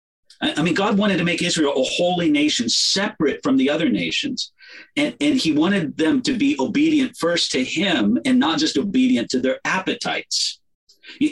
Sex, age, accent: male, 50-69, American